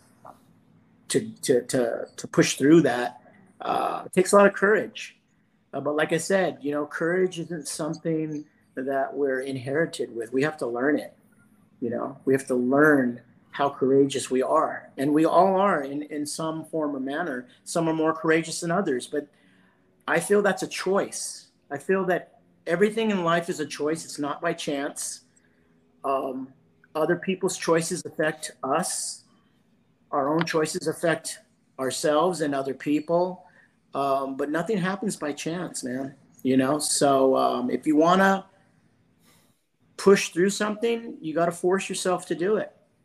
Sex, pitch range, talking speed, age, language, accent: male, 145-185 Hz, 160 wpm, 50-69, English, American